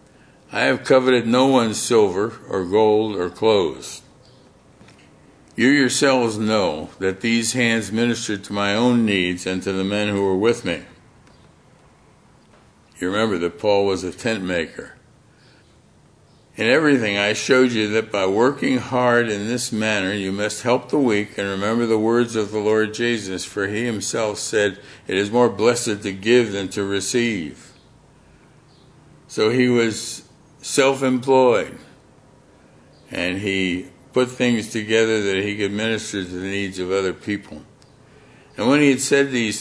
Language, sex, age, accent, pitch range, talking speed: English, male, 60-79, American, 95-115 Hz, 150 wpm